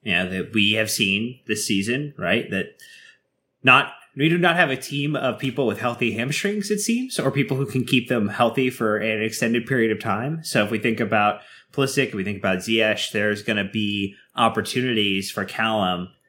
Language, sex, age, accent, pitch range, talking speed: English, male, 20-39, American, 100-120 Hz, 205 wpm